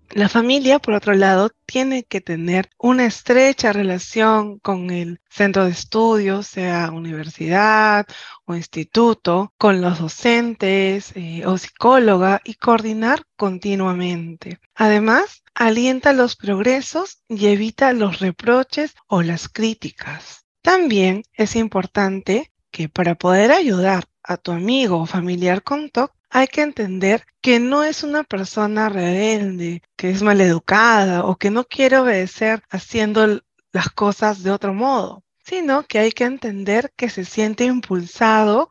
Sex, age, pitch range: female, 20-39, 190-245 Hz